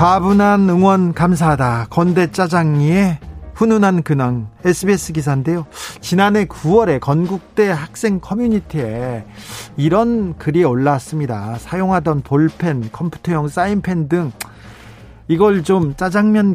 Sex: male